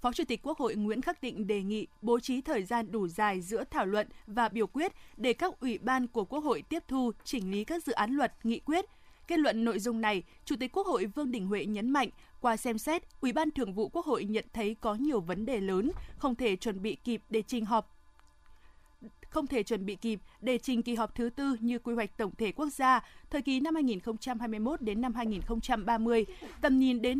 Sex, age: female, 20-39